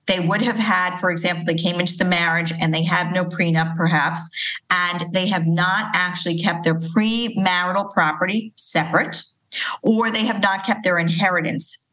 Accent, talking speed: American, 170 wpm